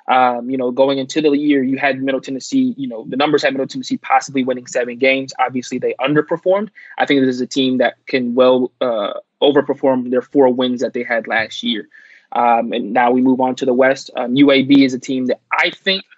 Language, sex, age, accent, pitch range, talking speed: English, male, 20-39, American, 130-145 Hz, 225 wpm